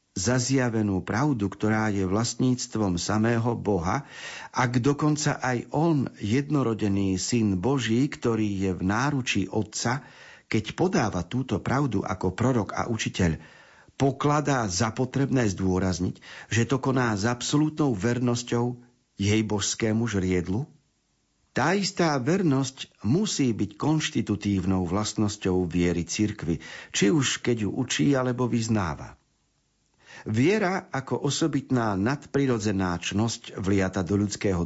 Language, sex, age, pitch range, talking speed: Slovak, male, 50-69, 100-130 Hz, 110 wpm